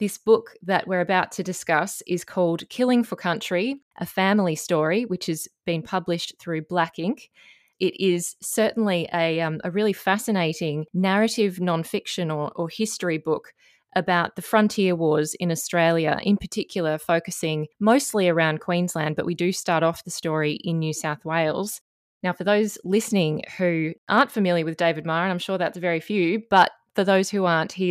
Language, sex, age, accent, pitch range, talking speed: English, female, 20-39, Australian, 165-200 Hz, 175 wpm